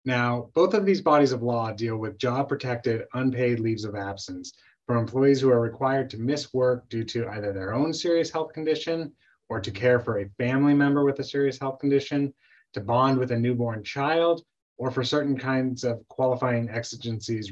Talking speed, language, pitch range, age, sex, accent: 190 wpm, English, 115-140 Hz, 30-49, male, American